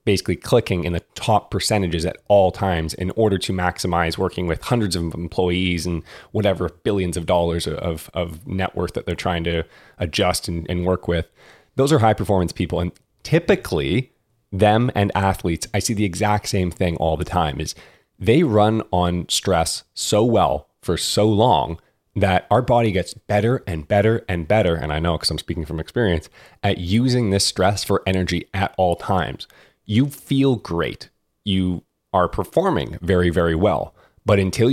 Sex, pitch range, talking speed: male, 85-105 Hz, 175 wpm